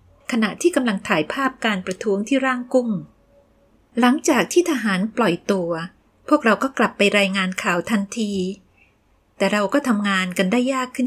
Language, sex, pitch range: Thai, female, 190-255 Hz